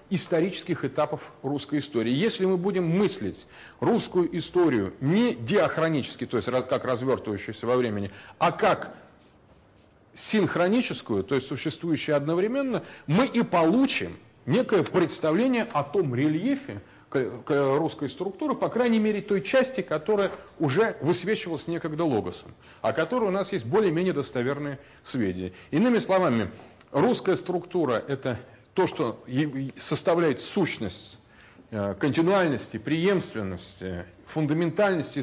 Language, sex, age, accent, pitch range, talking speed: Russian, male, 40-59, native, 130-195 Hz, 110 wpm